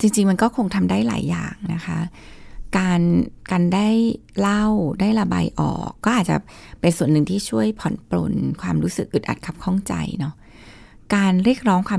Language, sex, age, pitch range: Thai, female, 20-39, 150-205 Hz